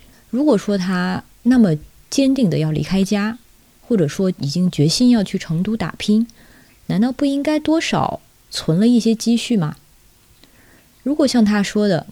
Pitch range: 160-235 Hz